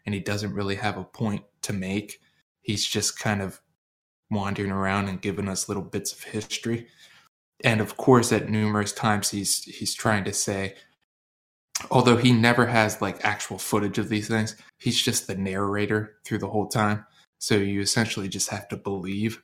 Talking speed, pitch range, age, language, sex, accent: 180 wpm, 100-115 Hz, 20-39, English, male, American